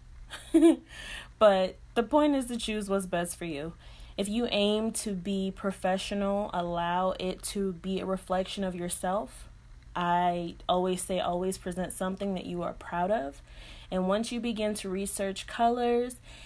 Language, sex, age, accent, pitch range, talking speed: English, female, 20-39, American, 180-215 Hz, 155 wpm